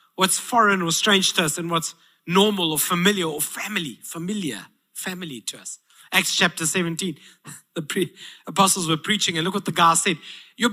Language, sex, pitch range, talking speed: English, male, 160-235 Hz, 175 wpm